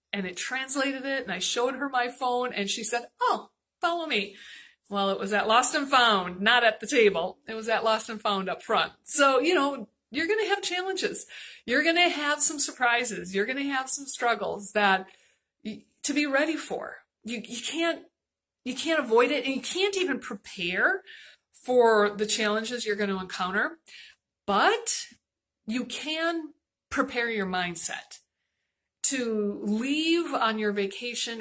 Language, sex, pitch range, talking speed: English, female, 200-285 Hz, 170 wpm